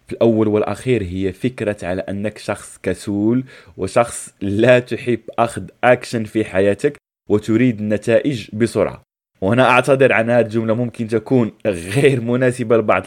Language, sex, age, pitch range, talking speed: Arabic, male, 20-39, 105-135 Hz, 130 wpm